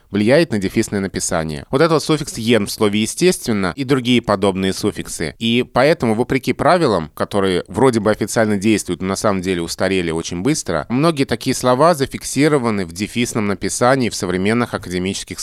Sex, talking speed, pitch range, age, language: male, 160 wpm, 95-120 Hz, 20-39, Russian